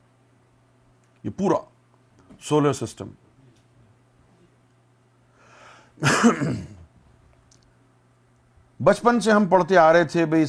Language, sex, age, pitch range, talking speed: Urdu, male, 50-69, 125-145 Hz, 65 wpm